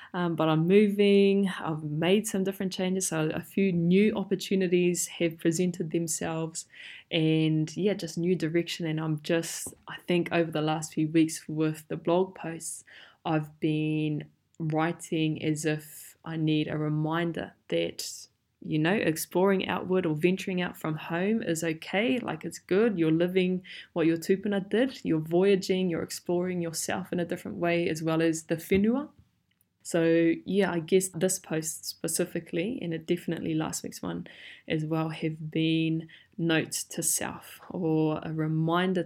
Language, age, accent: English, 20-39, Australian